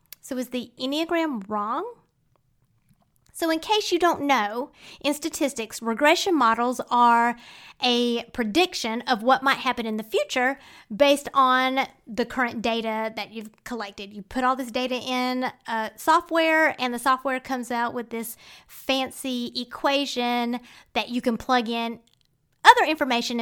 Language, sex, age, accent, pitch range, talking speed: English, female, 30-49, American, 235-300 Hz, 145 wpm